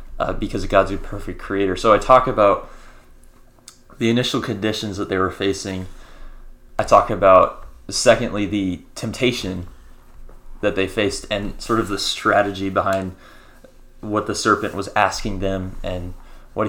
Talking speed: 145 wpm